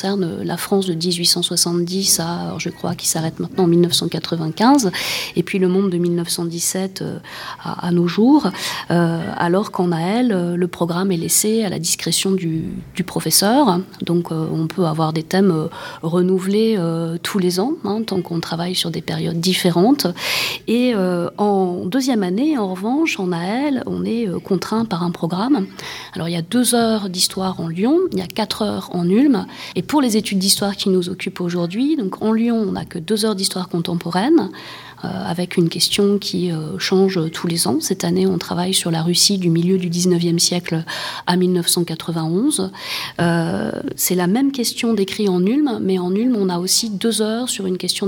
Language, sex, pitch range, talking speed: English, female, 175-200 Hz, 180 wpm